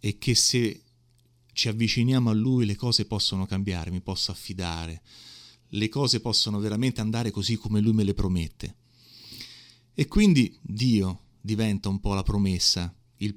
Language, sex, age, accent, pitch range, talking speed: Italian, male, 30-49, native, 100-120 Hz, 155 wpm